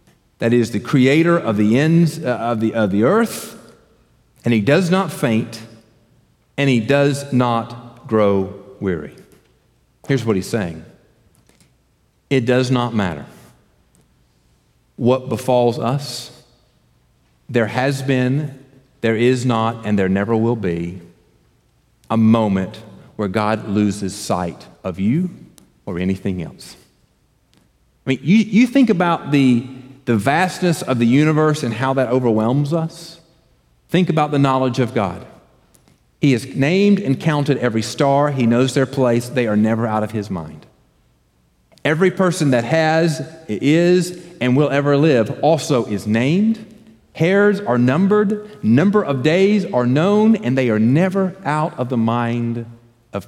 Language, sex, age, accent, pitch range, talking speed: English, male, 40-59, American, 110-155 Hz, 140 wpm